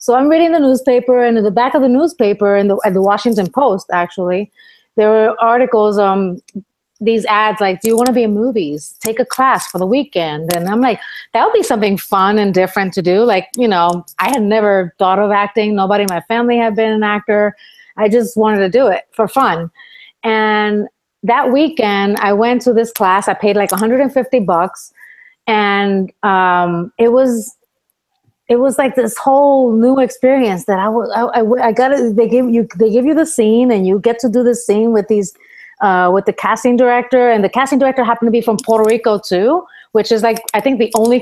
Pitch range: 200-250 Hz